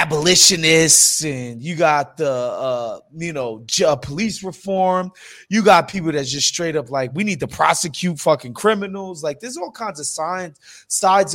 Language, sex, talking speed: English, male, 165 wpm